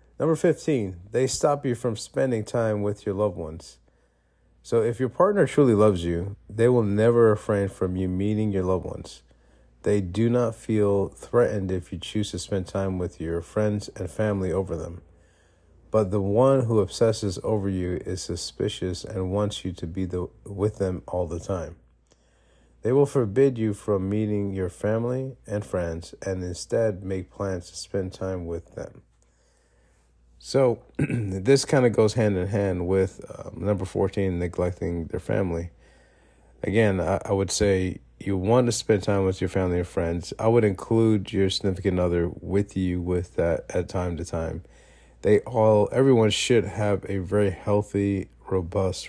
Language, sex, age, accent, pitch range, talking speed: English, male, 40-59, American, 90-110 Hz, 170 wpm